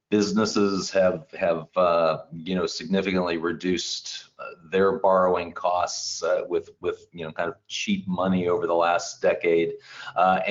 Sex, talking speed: male, 150 wpm